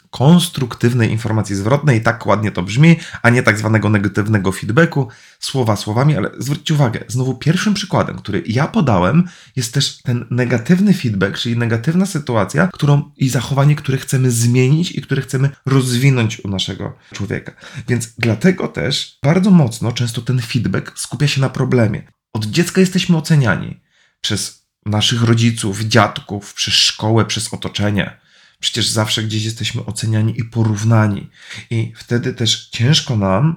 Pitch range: 105-140 Hz